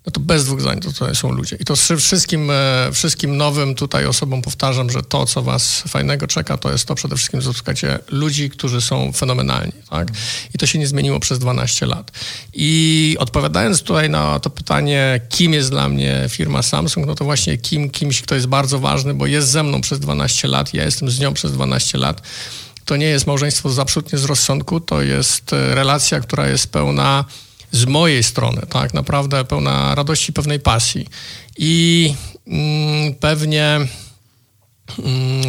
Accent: native